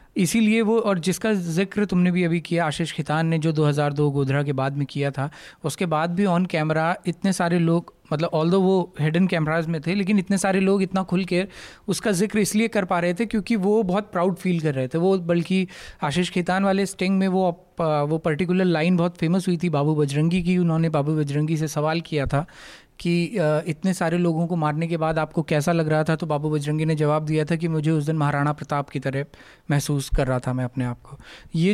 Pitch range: 155-190 Hz